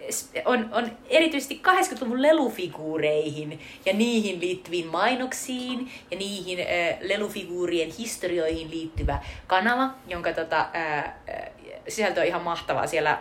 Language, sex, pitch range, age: Finnish, female, 170-235 Hz, 30-49